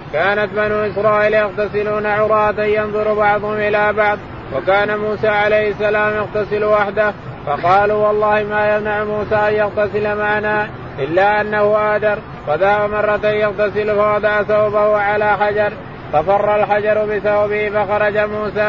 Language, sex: Arabic, male